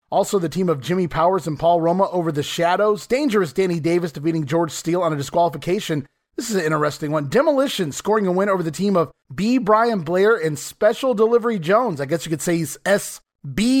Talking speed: 210 wpm